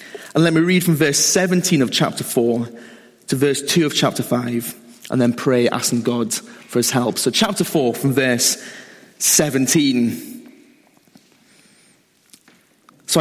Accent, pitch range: British, 125-180 Hz